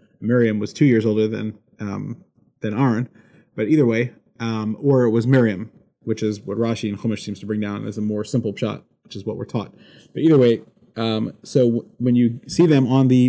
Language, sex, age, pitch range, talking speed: English, male, 30-49, 110-130 Hz, 215 wpm